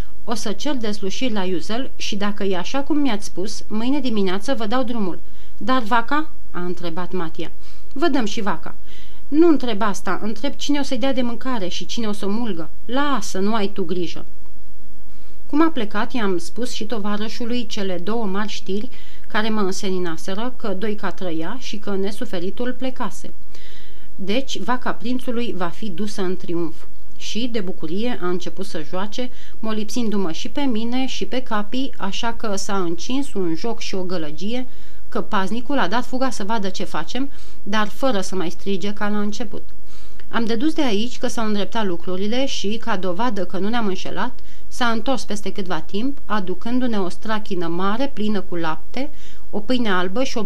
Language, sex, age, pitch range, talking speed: Romanian, female, 30-49, 185-245 Hz, 180 wpm